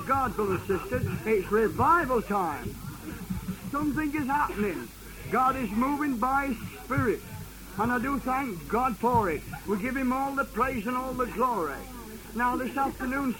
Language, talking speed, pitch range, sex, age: English, 155 wpm, 205-255 Hz, male, 60-79